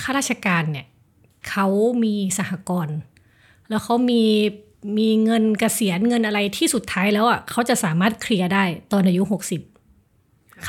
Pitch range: 175-220 Hz